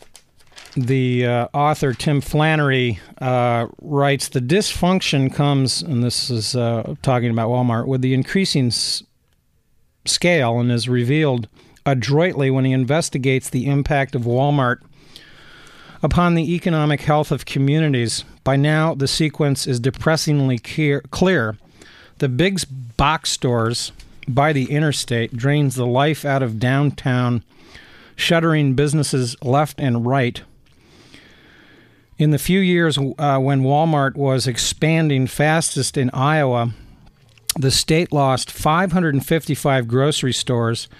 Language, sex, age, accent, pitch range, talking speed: English, male, 50-69, American, 125-155 Hz, 120 wpm